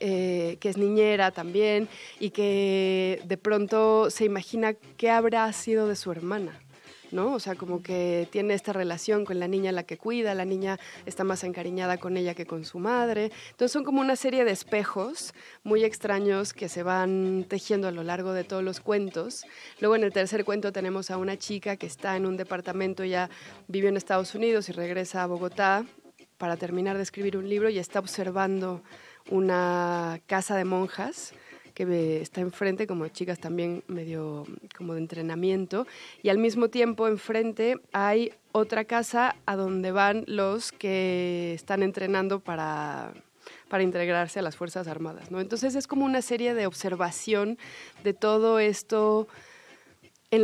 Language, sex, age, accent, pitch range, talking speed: Spanish, female, 20-39, Mexican, 185-215 Hz, 170 wpm